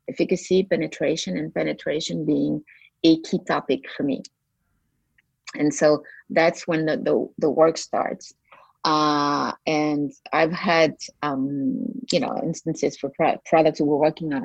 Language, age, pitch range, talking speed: English, 30-49, 155-185 Hz, 135 wpm